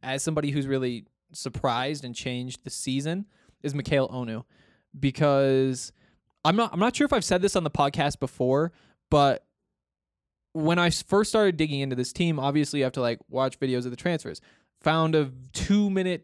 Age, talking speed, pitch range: 20-39, 180 wpm, 130-170 Hz